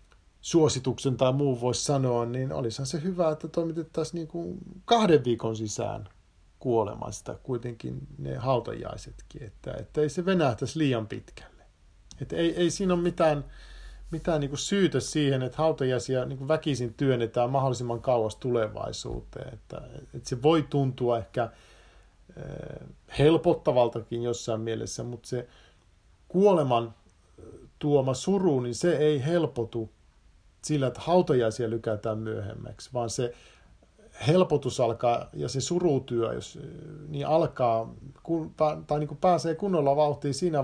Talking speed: 125 wpm